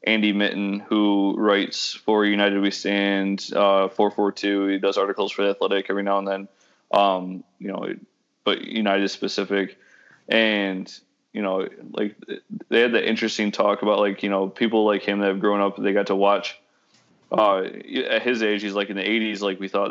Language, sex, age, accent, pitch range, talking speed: English, male, 20-39, American, 100-105 Hz, 190 wpm